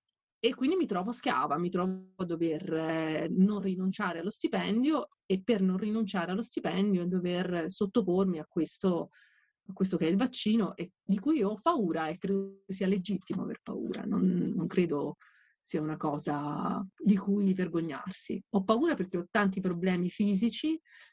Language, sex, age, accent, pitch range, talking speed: Italian, female, 30-49, native, 170-210 Hz, 160 wpm